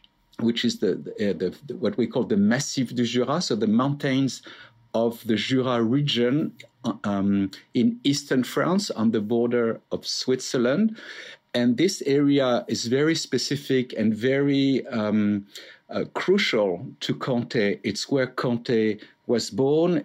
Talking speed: 140 wpm